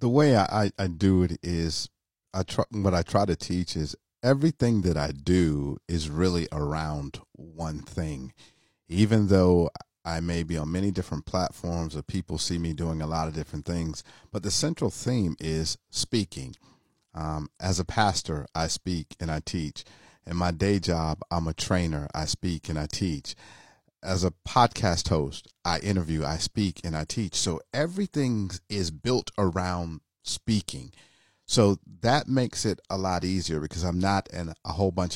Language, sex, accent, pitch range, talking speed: English, male, American, 80-105 Hz, 170 wpm